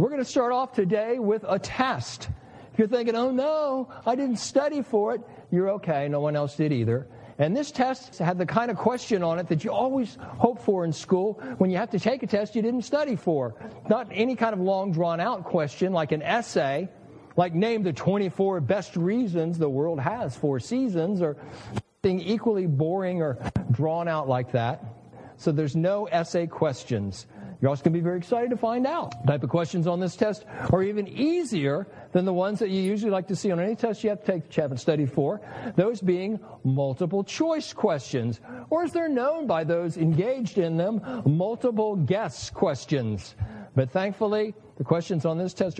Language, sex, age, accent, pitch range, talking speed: English, male, 50-69, American, 150-220 Hz, 200 wpm